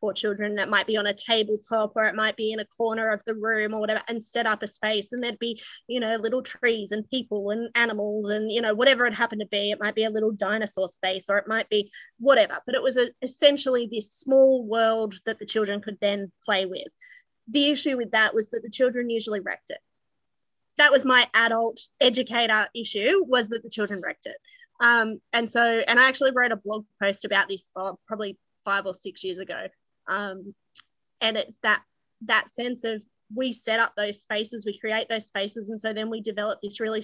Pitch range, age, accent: 210-235 Hz, 20-39, Australian